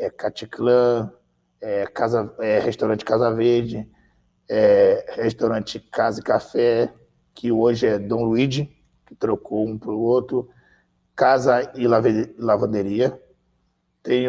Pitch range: 105-125 Hz